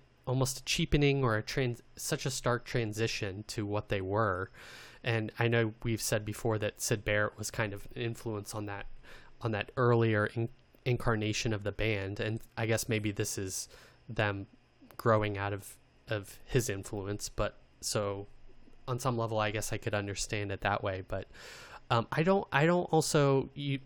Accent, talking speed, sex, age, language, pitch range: American, 180 wpm, male, 20-39, English, 105-130 Hz